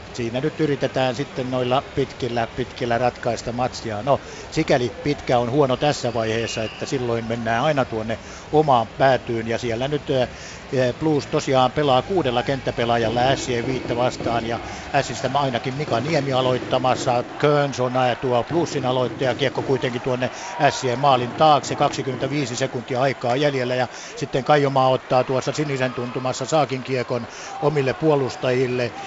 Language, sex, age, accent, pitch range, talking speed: Finnish, male, 60-79, native, 125-145 Hz, 135 wpm